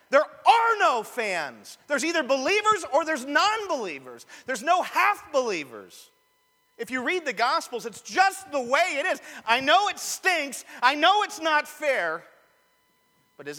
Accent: American